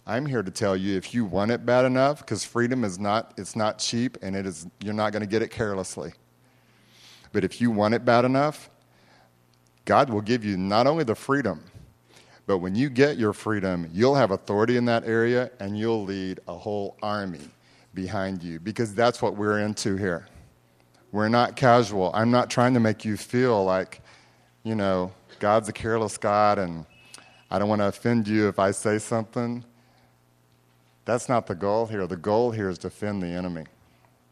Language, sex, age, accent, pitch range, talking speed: English, male, 40-59, American, 90-115 Hz, 190 wpm